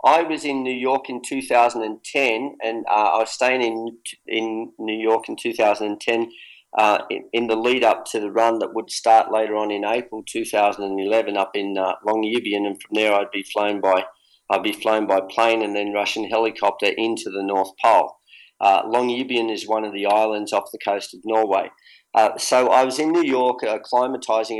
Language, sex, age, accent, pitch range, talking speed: English, male, 40-59, Australian, 105-120 Hz, 195 wpm